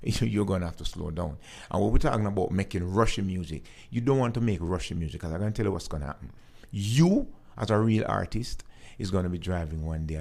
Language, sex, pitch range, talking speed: English, male, 80-105 Hz, 260 wpm